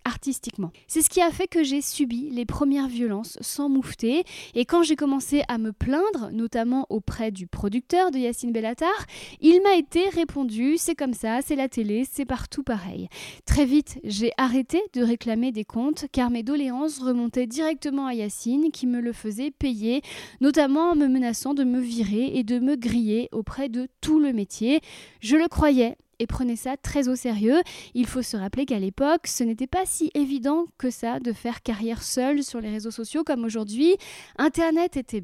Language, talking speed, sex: French, 190 wpm, female